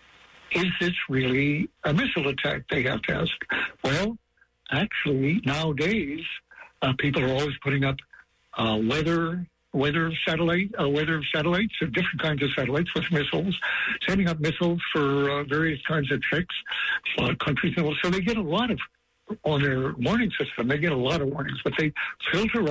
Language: English